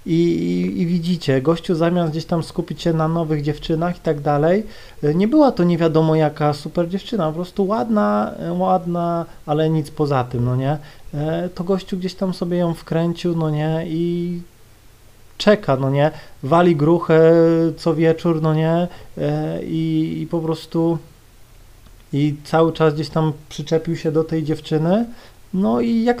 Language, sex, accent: Polish, male, native